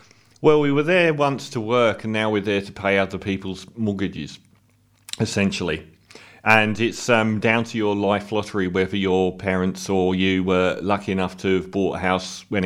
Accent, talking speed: British, 185 wpm